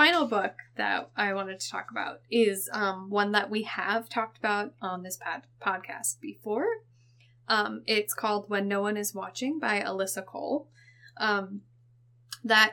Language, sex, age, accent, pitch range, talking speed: English, female, 10-29, American, 175-235 Hz, 160 wpm